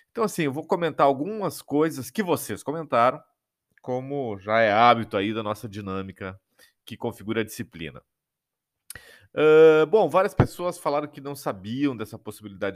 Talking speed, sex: 145 wpm, male